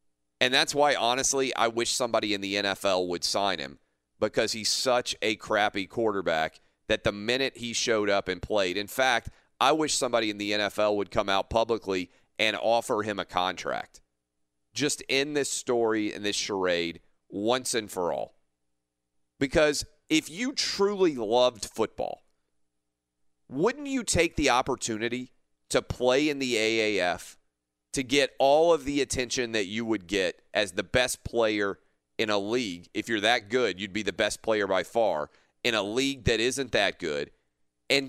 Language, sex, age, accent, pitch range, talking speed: English, male, 40-59, American, 80-135 Hz, 170 wpm